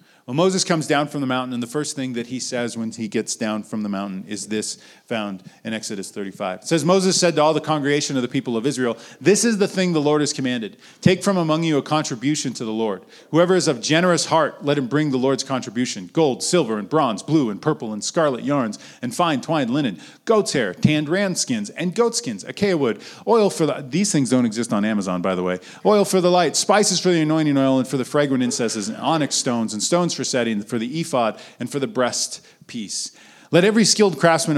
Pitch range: 120-165 Hz